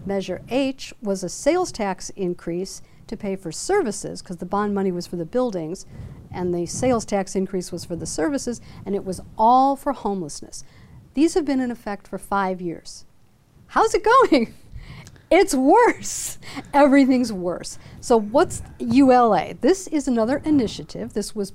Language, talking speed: English, 160 wpm